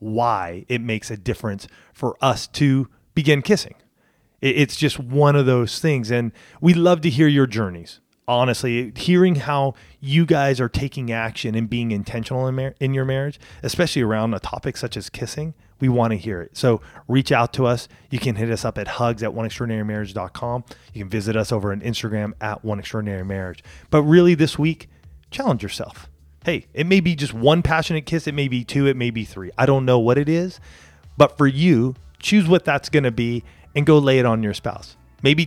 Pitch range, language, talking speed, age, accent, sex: 105-140 Hz, English, 205 wpm, 30-49, American, male